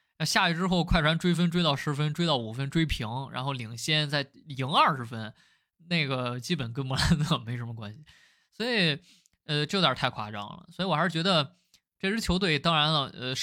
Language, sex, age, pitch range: Chinese, male, 20-39, 125-165 Hz